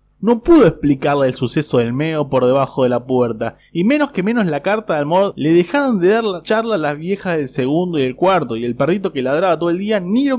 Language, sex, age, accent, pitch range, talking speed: Spanish, male, 20-39, Argentinian, 130-205 Hz, 255 wpm